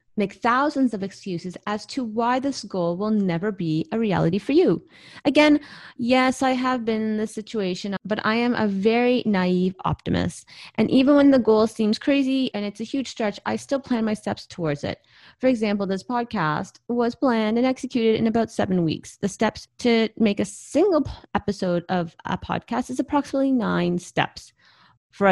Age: 30-49